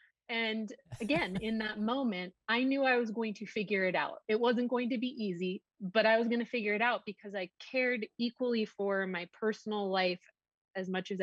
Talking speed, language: 210 wpm, English